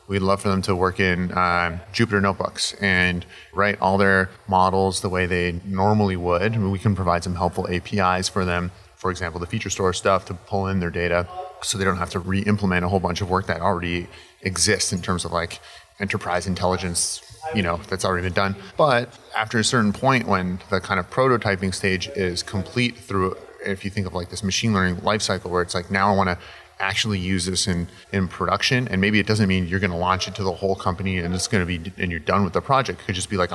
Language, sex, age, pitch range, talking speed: English, male, 30-49, 90-100 Hz, 235 wpm